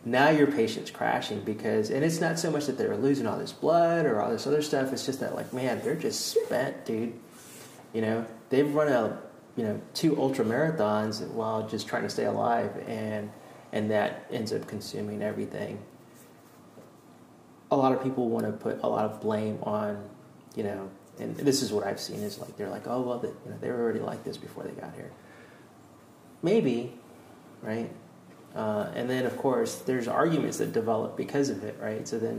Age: 30-49